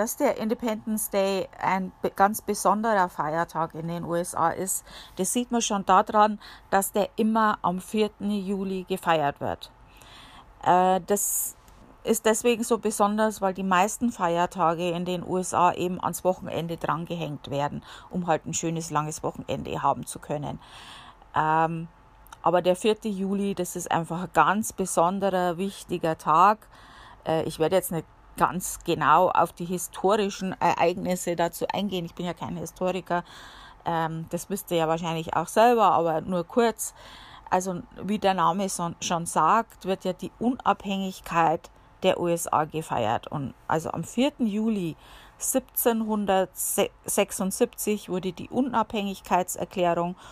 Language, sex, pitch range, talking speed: German, female, 170-205 Hz, 135 wpm